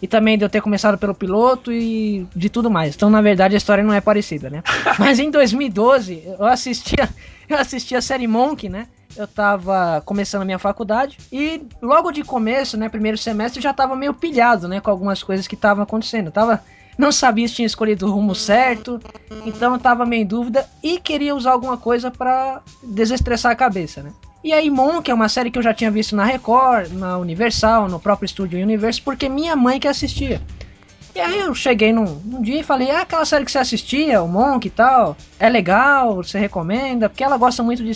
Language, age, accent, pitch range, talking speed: Portuguese, 20-39, Brazilian, 205-255 Hz, 215 wpm